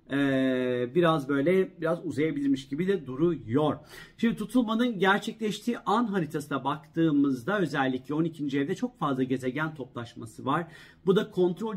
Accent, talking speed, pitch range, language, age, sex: native, 120 wpm, 145-180 Hz, Turkish, 50-69, male